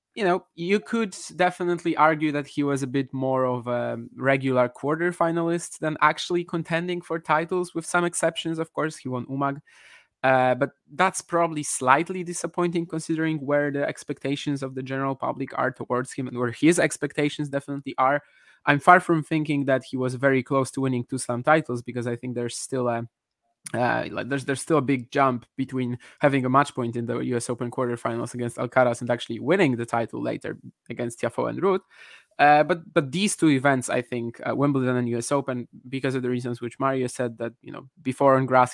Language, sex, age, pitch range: English, male, 20-39, 125-155 Hz